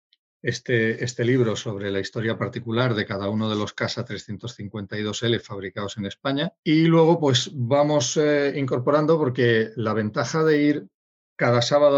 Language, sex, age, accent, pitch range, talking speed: Spanish, male, 40-59, Spanish, 110-140 Hz, 150 wpm